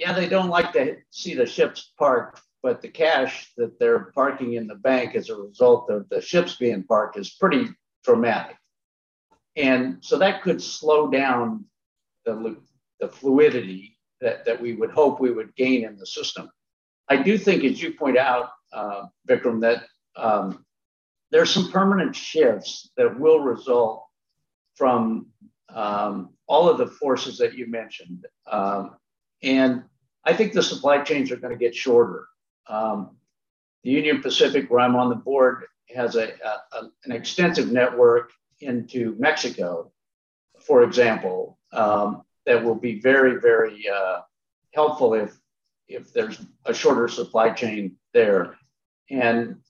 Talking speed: 150 wpm